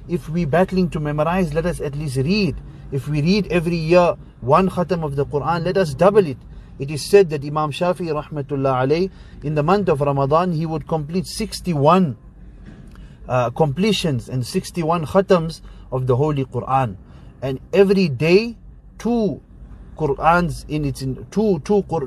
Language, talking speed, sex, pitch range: English, 155 wpm, male, 130-170 Hz